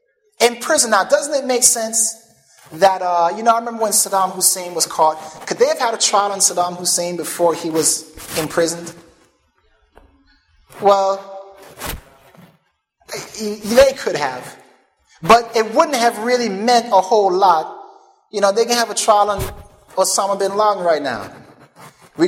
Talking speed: 155 wpm